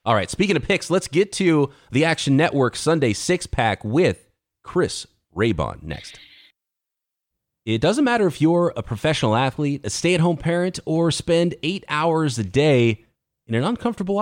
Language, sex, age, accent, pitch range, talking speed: English, male, 30-49, American, 120-180 Hz, 155 wpm